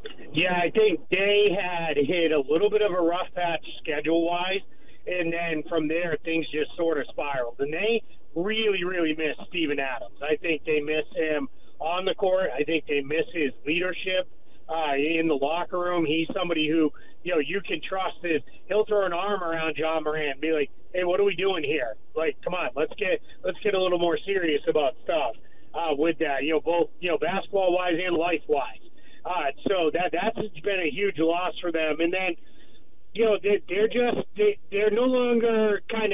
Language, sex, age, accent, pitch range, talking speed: English, male, 30-49, American, 160-205 Hz, 200 wpm